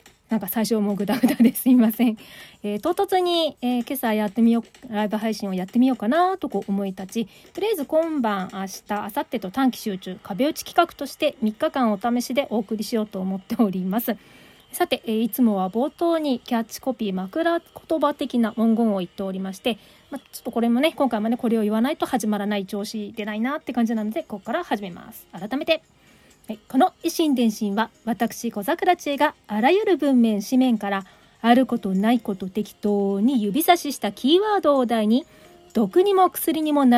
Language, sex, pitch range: Japanese, female, 210-285 Hz